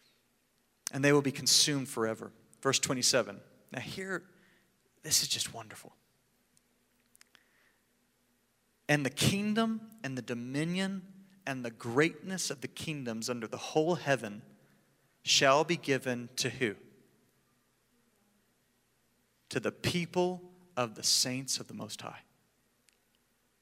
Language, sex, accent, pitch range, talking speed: English, male, American, 130-180 Hz, 115 wpm